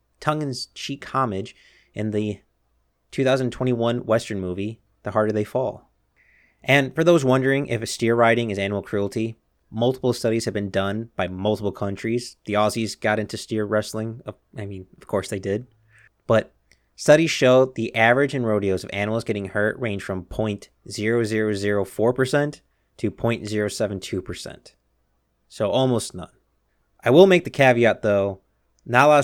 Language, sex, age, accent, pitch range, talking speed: English, male, 30-49, American, 100-125 Hz, 150 wpm